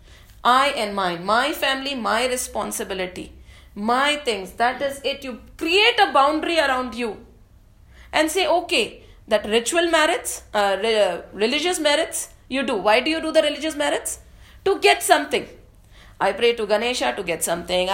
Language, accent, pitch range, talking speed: English, Indian, 205-310 Hz, 155 wpm